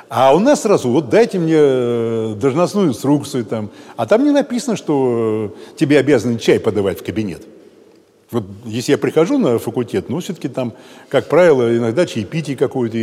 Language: Russian